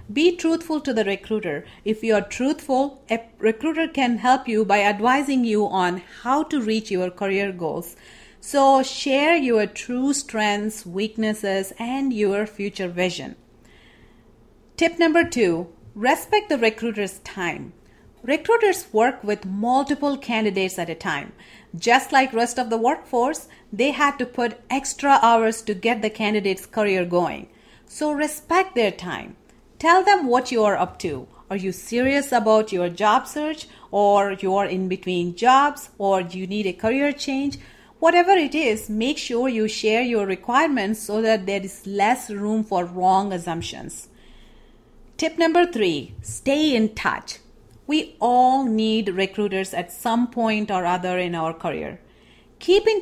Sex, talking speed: female, 155 wpm